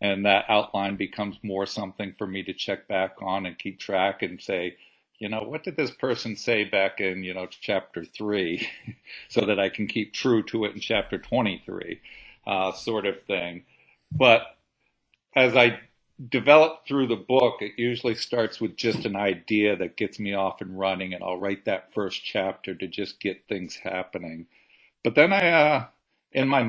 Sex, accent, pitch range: male, American, 95-105 Hz